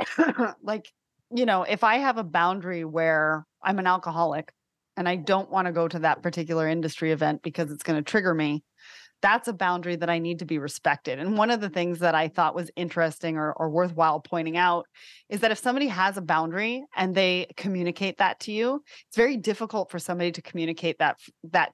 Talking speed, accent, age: 205 wpm, American, 30-49